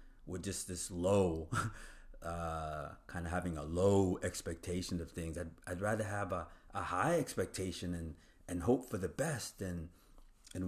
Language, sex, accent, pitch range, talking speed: English, male, American, 90-120 Hz, 165 wpm